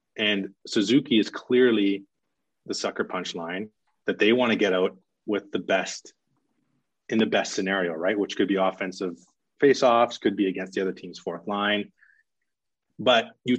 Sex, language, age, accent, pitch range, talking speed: male, English, 30-49, American, 95-110 Hz, 165 wpm